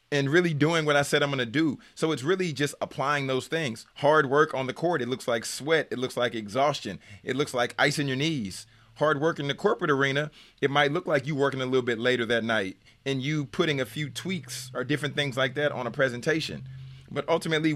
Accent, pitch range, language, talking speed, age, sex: American, 125-155 Hz, English, 240 wpm, 30-49, male